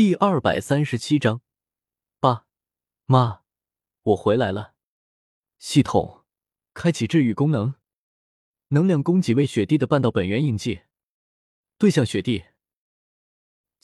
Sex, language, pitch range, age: male, Chinese, 105-160 Hz, 20-39